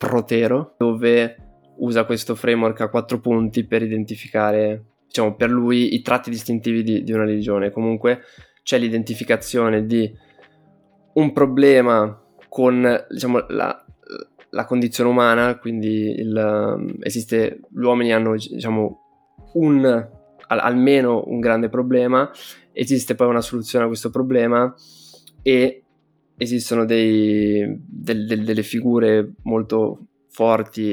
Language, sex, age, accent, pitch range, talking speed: Italian, male, 20-39, native, 105-120 Hz, 110 wpm